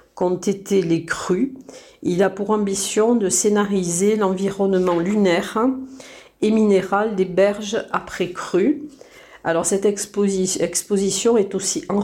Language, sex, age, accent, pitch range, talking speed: French, female, 50-69, French, 185-220 Hz, 125 wpm